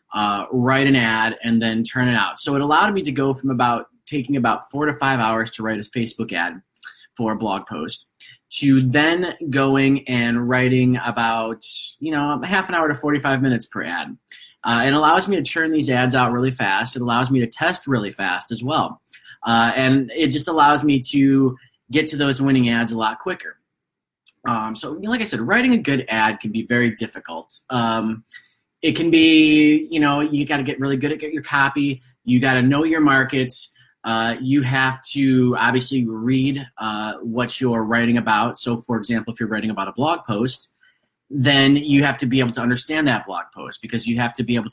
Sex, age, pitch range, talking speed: male, 20-39, 115-140 Hz, 205 wpm